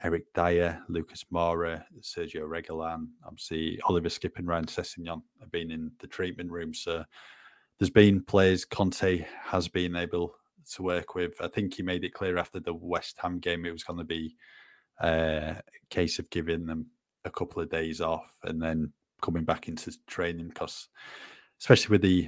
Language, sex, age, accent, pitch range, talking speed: English, male, 20-39, British, 85-90 Hz, 165 wpm